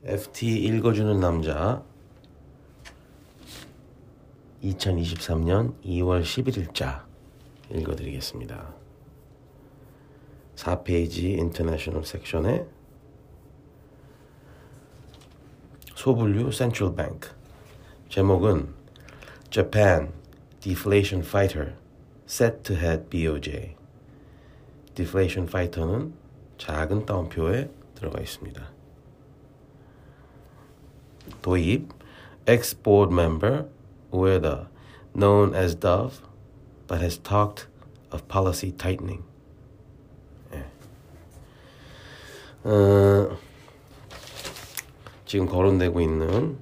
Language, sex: Korean, male